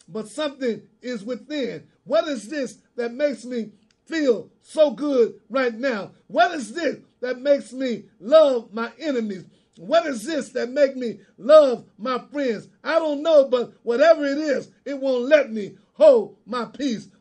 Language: English